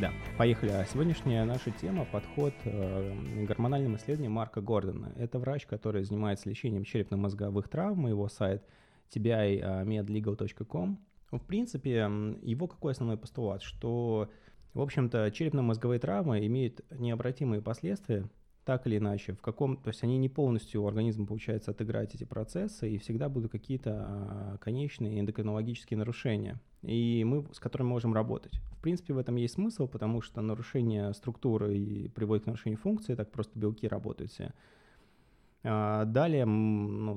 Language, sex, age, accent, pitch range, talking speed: Russian, male, 20-39, native, 105-120 Hz, 140 wpm